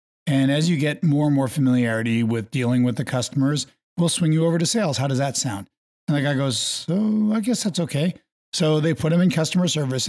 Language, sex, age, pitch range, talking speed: English, male, 50-69, 120-165 Hz, 230 wpm